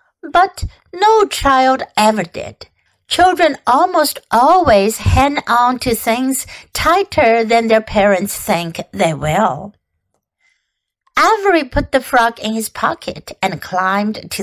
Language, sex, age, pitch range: Chinese, female, 60-79, 230-355 Hz